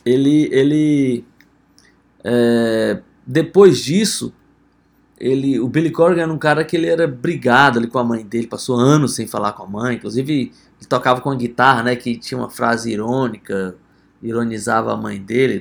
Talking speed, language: 170 wpm, Portuguese